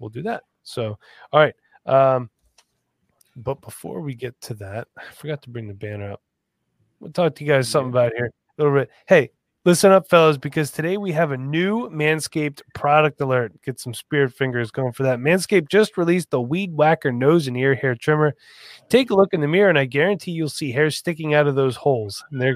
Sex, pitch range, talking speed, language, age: male, 130-175 Hz, 215 wpm, English, 20-39